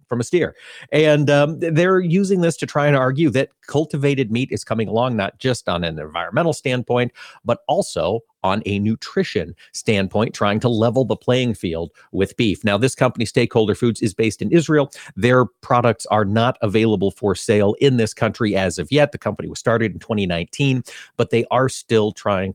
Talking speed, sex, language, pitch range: 190 wpm, male, English, 110-155 Hz